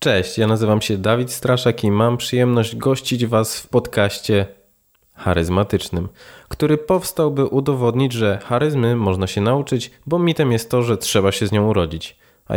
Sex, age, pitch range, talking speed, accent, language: male, 20-39, 110-135 Hz, 160 wpm, native, Polish